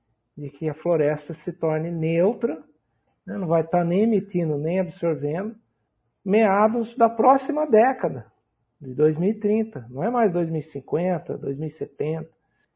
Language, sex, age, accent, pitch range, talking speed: Portuguese, male, 60-79, Brazilian, 145-195 Hz, 120 wpm